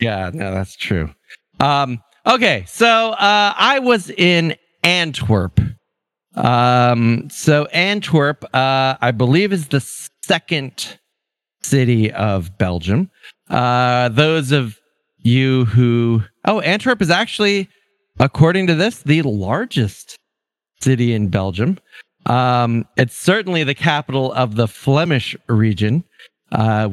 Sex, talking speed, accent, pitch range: male, 115 wpm, American, 115-170 Hz